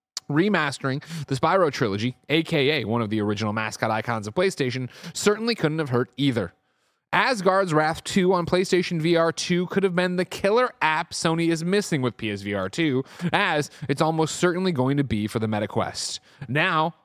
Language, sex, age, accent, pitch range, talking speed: English, male, 30-49, American, 120-165 Hz, 170 wpm